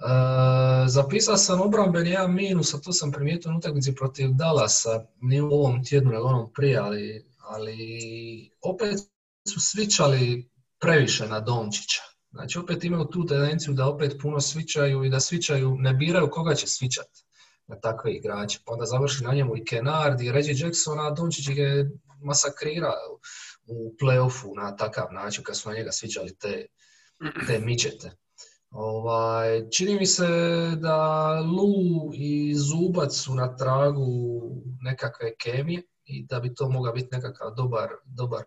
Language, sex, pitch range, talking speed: English, male, 125-155 Hz, 150 wpm